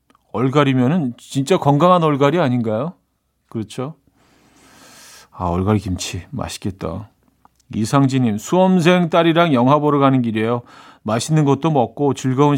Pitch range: 115-155 Hz